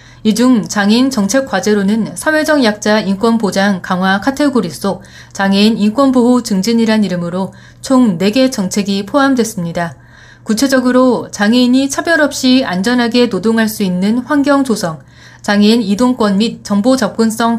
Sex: female